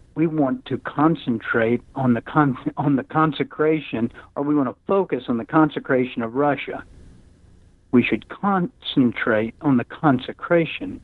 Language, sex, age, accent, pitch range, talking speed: English, male, 60-79, American, 125-150 Hz, 140 wpm